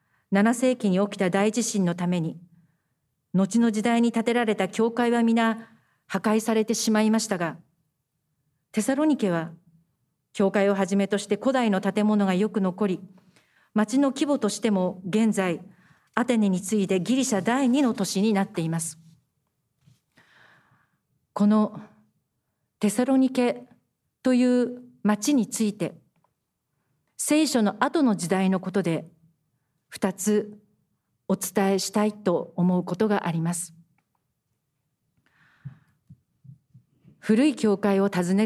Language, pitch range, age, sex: Japanese, 175-220 Hz, 40-59, female